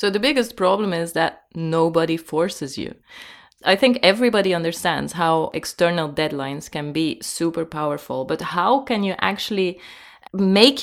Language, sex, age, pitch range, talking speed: English, female, 20-39, 145-190 Hz, 145 wpm